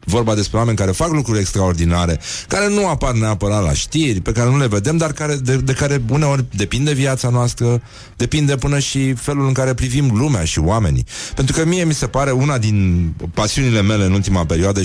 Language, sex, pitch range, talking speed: Romanian, male, 100-135 Hz, 200 wpm